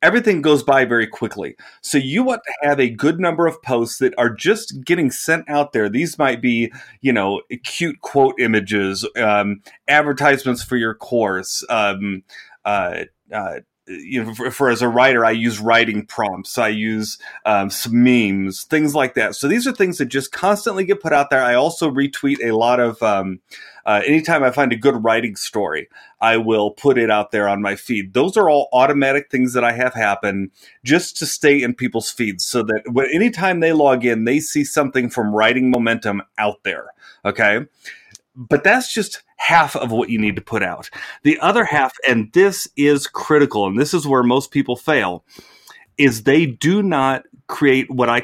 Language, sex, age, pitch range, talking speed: English, male, 30-49, 115-145 Hz, 190 wpm